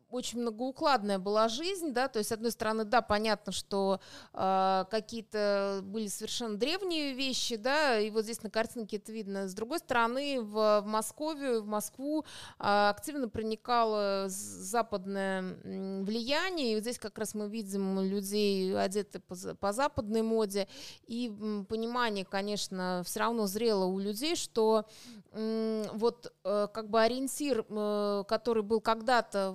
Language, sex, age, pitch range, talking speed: Russian, female, 20-39, 205-240 Hz, 150 wpm